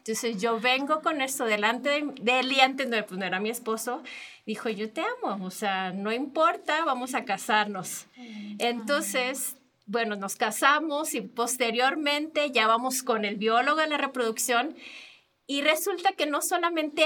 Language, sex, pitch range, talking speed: Spanish, female, 225-290 Hz, 160 wpm